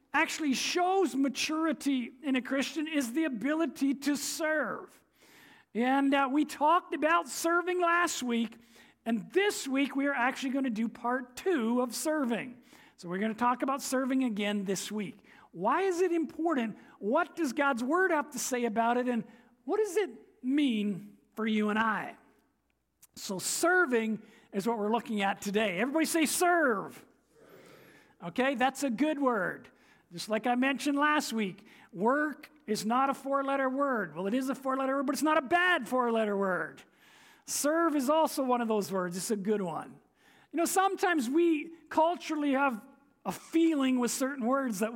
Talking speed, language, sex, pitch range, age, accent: 170 wpm, English, male, 225-300 Hz, 50-69, American